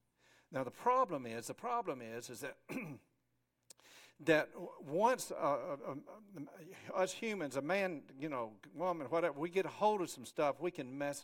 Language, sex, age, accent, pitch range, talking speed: English, male, 60-79, American, 150-225 Hz, 170 wpm